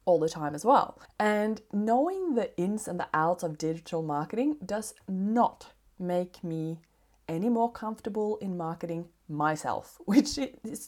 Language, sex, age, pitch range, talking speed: English, female, 20-39, 155-210 Hz, 150 wpm